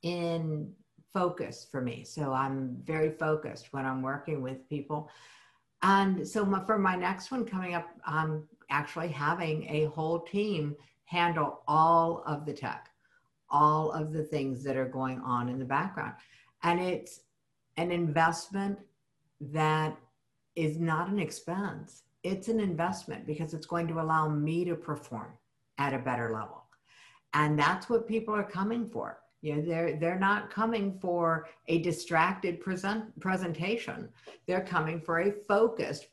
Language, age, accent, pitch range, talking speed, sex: English, 60-79, American, 145-185 Hz, 150 wpm, female